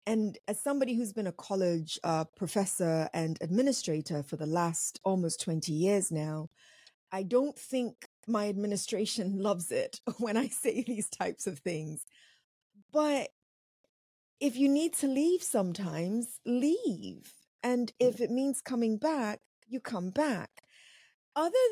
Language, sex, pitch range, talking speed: English, female, 195-280 Hz, 140 wpm